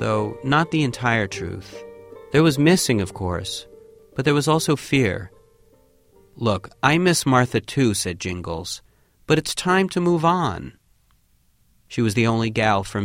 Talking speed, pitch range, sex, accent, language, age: 155 wpm, 100-150 Hz, male, American, English, 40-59